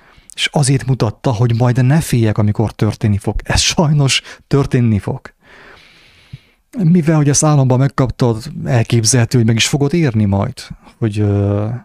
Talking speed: 135 wpm